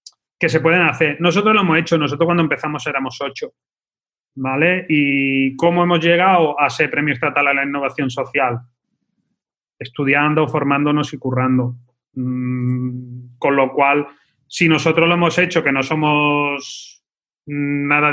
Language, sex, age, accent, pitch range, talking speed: Spanish, male, 30-49, Spanish, 140-165 Hz, 140 wpm